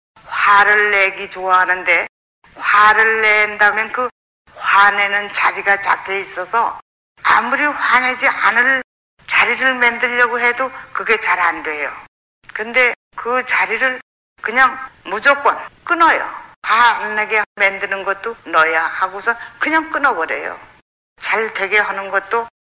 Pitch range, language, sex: 200-265 Hz, Korean, female